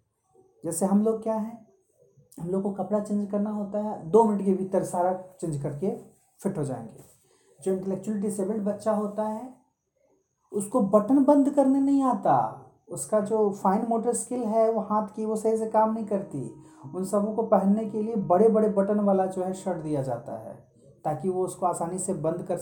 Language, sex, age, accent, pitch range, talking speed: Hindi, male, 30-49, native, 190-255 Hz, 195 wpm